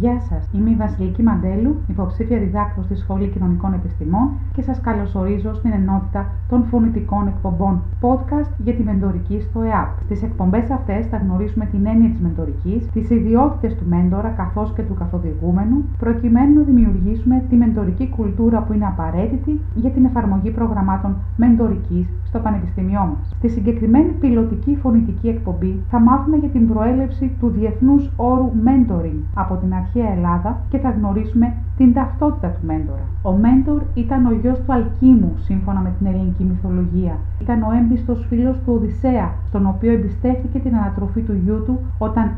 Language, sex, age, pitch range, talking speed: Greek, female, 40-59, 90-110 Hz, 160 wpm